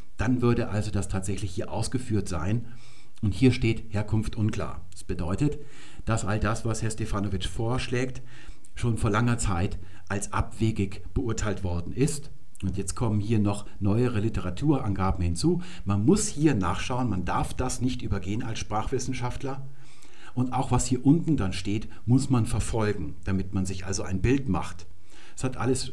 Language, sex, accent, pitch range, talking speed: German, male, German, 100-130 Hz, 160 wpm